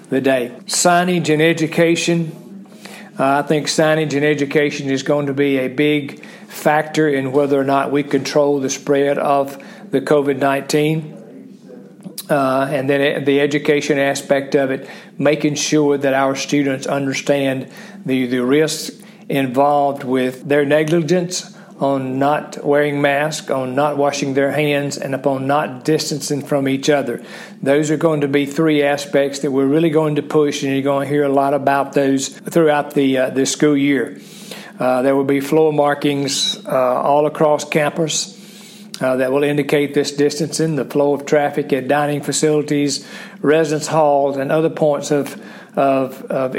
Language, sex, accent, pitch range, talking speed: English, male, American, 140-155 Hz, 160 wpm